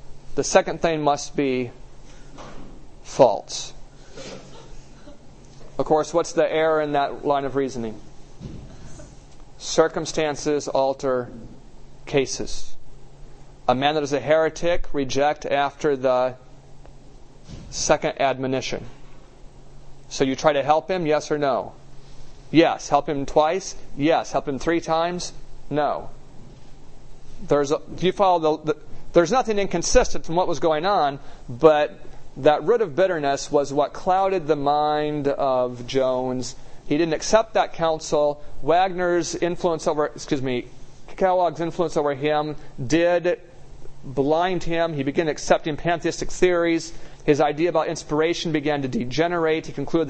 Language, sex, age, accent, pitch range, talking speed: English, male, 40-59, American, 140-165 Hz, 130 wpm